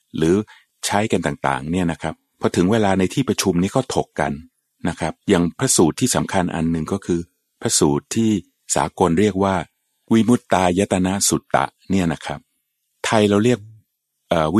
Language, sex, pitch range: Thai, male, 85-115 Hz